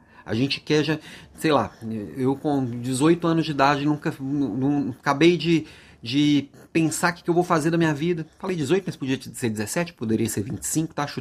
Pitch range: 125-175 Hz